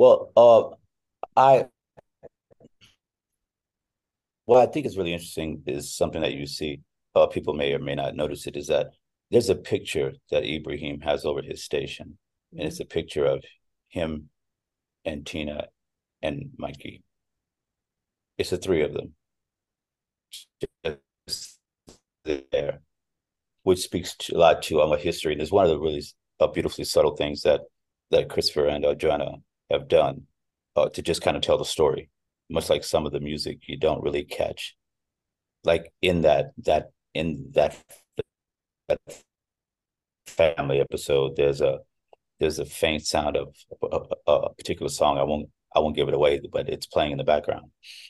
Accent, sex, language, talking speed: American, male, English, 155 wpm